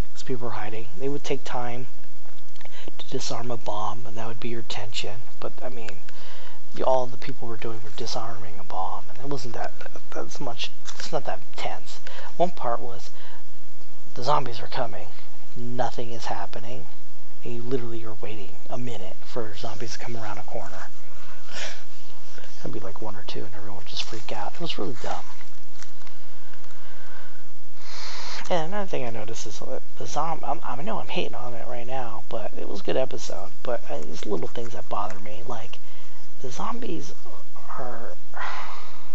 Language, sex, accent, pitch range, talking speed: English, male, American, 110-130 Hz, 170 wpm